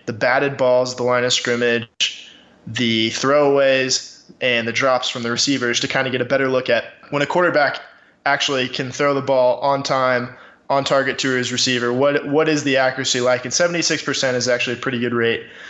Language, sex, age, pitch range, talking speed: English, male, 20-39, 120-135 Hz, 205 wpm